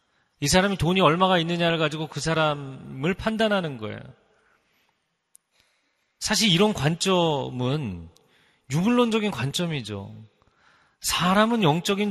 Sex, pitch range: male, 120-175 Hz